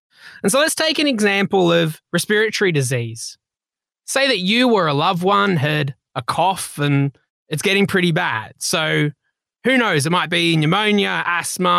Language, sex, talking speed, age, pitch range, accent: English, male, 165 wpm, 20-39, 145-200 Hz, Australian